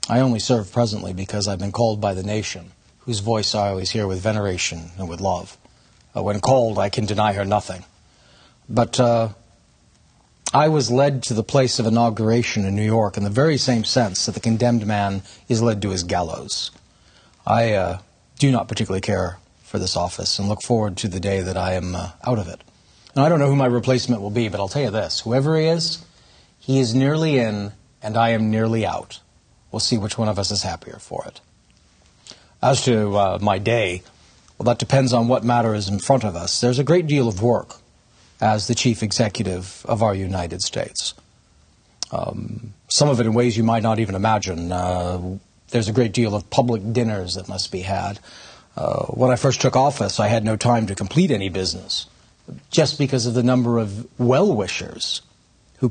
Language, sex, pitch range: English, male, 100-120 Hz